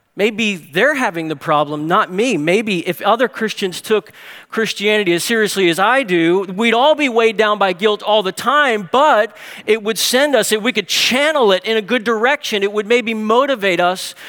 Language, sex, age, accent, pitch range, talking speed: English, male, 40-59, American, 165-215 Hz, 195 wpm